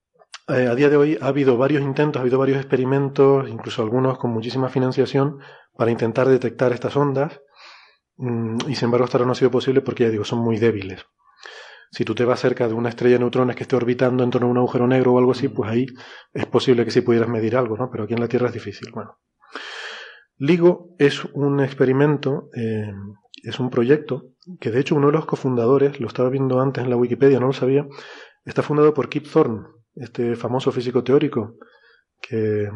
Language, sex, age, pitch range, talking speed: Spanish, male, 30-49, 115-135 Hz, 205 wpm